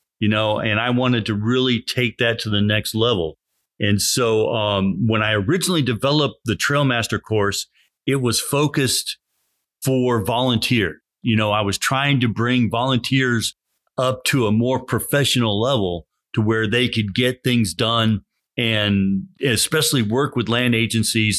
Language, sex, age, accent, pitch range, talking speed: English, male, 40-59, American, 105-130 Hz, 155 wpm